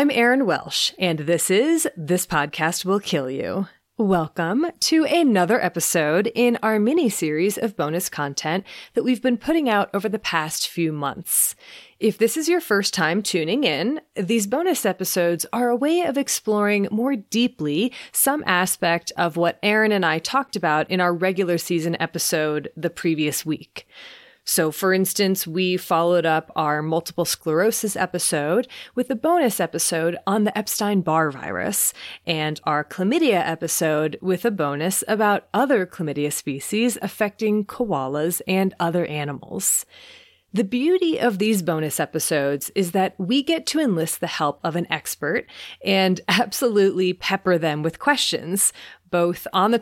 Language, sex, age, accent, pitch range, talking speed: English, female, 30-49, American, 165-235 Hz, 150 wpm